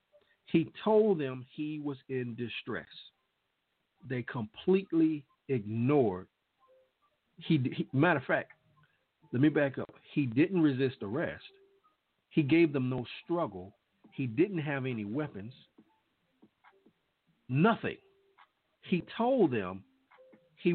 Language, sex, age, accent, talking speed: English, male, 50-69, American, 110 wpm